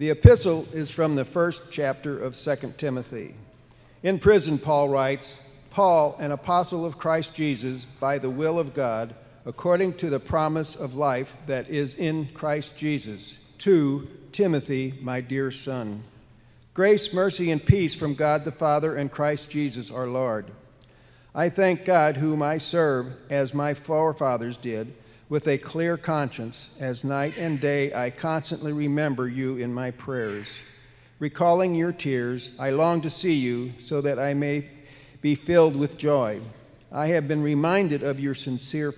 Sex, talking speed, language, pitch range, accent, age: male, 155 wpm, English, 130-155 Hz, American, 50-69